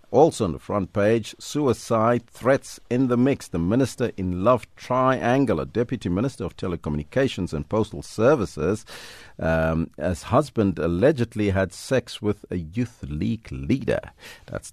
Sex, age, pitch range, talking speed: male, 50-69, 80-120 Hz, 145 wpm